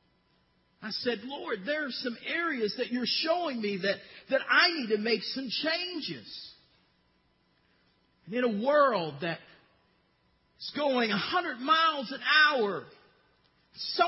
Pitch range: 215-300 Hz